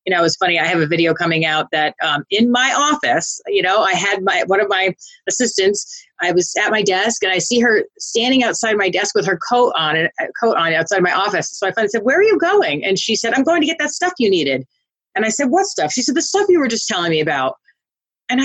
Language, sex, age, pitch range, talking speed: English, female, 30-49, 180-245 Hz, 275 wpm